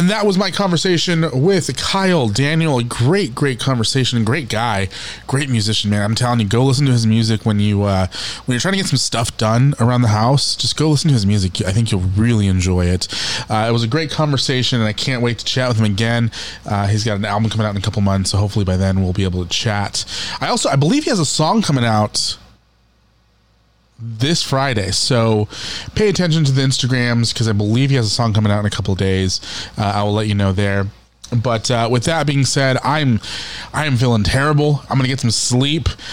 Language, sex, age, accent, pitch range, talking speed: English, male, 20-39, American, 110-145 Hz, 230 wpm